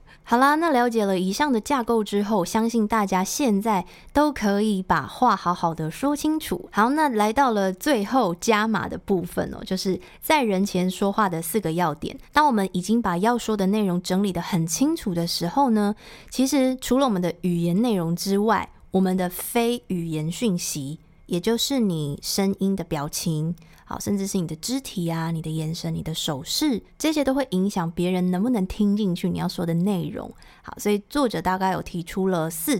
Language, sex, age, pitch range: Chinese, female, 20-39, 175-230 Hz